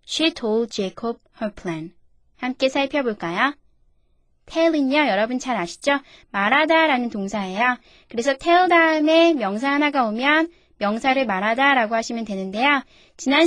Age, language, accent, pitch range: 20-39, Korean, native, 210-295 Hz